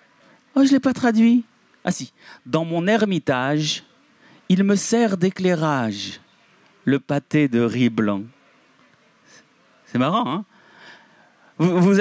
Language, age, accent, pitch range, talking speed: French, 40-59, French, 145-205 Hz, 120 wpm